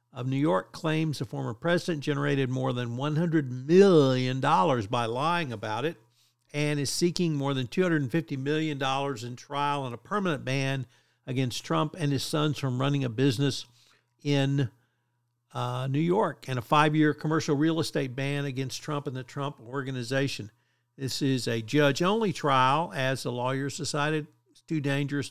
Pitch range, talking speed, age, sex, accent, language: 125-155 Hz, 160 wpm, 50-69, male, American, English